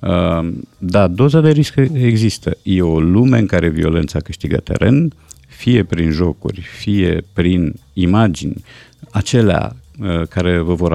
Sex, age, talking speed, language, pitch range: male, 50-69, 135 wpm, Romanian, 85-110 Hz